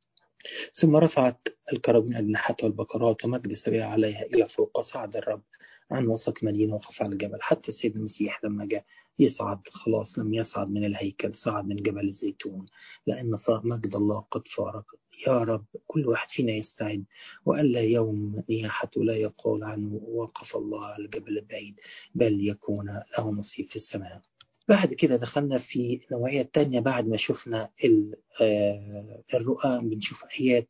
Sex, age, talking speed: male, 30-49, 145 wpm